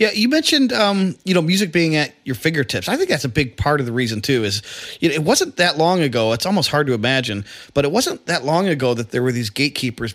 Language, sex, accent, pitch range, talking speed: English, male, American, 110-145 Hz, 265 wpm